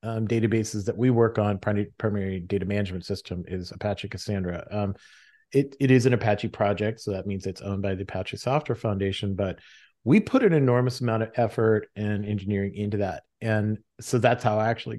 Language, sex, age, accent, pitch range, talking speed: English, male, 30-49, American, 105-130 Hz, 190 wpm